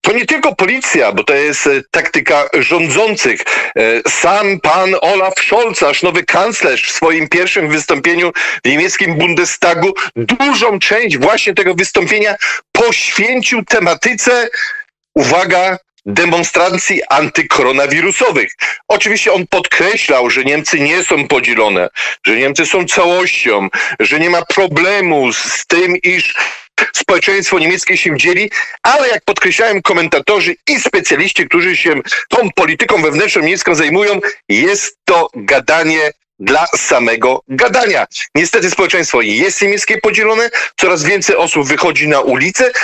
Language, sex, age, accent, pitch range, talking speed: Polish, male, 40-59, native, 170-250 Hz, 120 wpm